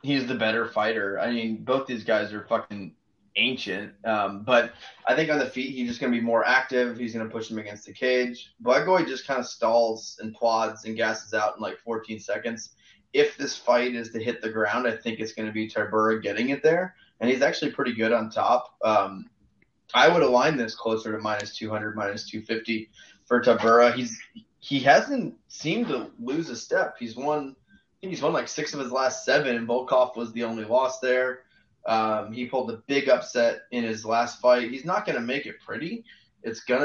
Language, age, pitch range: English, 20-39, 110-130 Hz